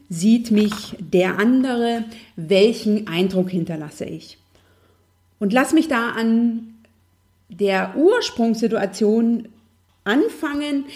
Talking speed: 90 wpm